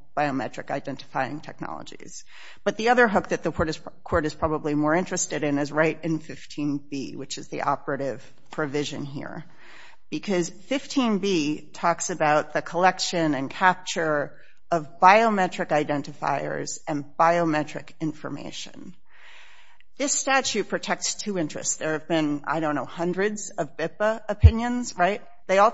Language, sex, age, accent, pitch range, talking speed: English, female, 40-59, American, 150-195 Hz, 135 wpm